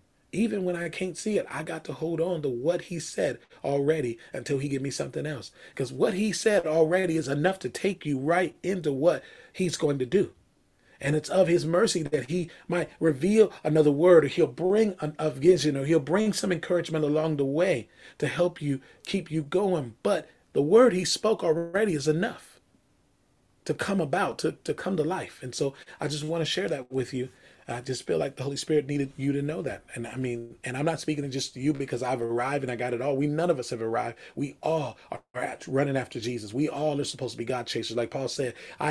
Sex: male